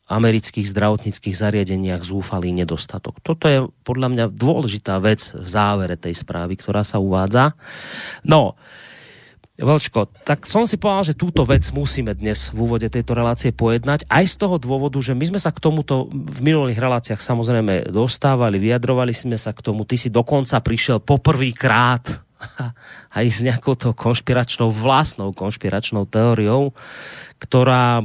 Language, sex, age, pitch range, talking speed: Slovak, male, 30-49, 100-130 Hz, 145 wpm